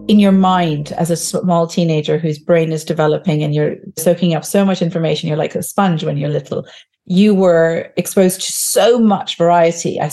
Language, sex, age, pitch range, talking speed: English, female, 40-59, 165-195 Hz, 195 wpm